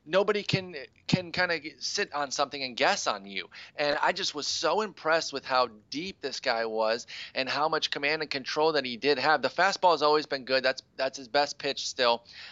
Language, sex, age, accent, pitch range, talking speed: English, male, 30-49, American, 130-160 Hz, 220 wpm